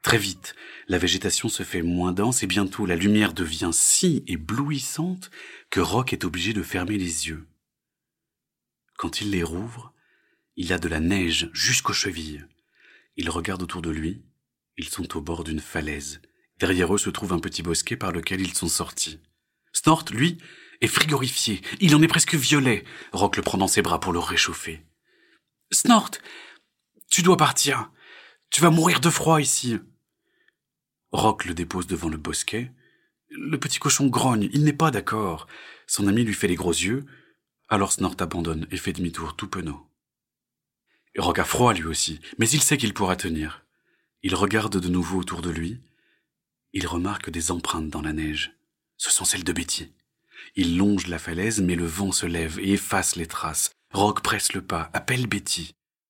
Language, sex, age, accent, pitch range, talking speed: French, male, 40-59, French, 85-115 Hz, 175 wpm